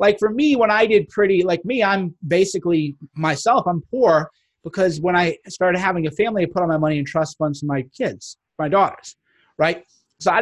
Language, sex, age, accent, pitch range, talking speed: English, male, 30-49, American, 155-200 Hz, 215 wpm